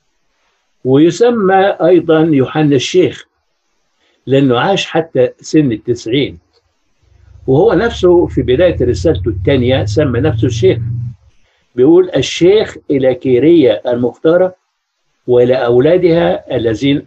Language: Arabic